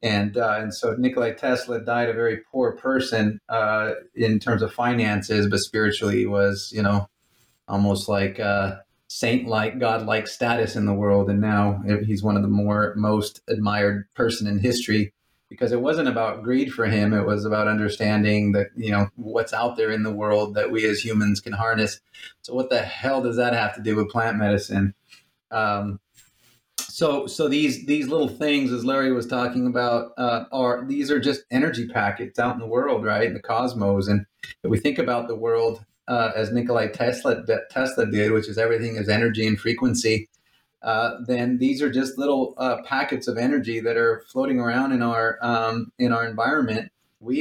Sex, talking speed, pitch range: male, 190 wpm, 105-120 Hz